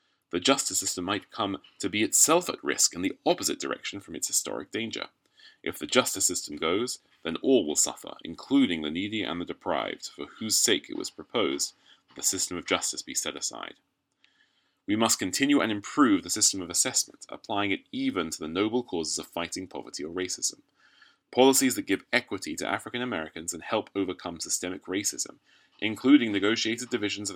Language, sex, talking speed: English, male, 180 wpm